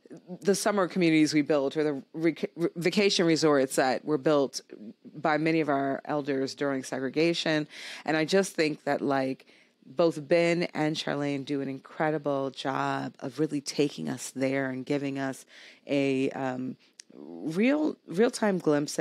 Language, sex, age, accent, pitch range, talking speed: English, female, 40-59, American, 140-165 Hz, 150 wpm